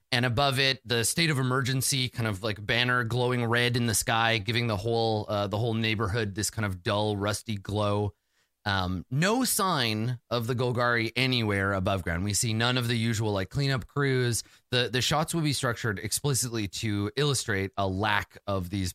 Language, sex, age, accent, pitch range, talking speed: English, male, 30-49, American, 105-125 Hz, 190 wpm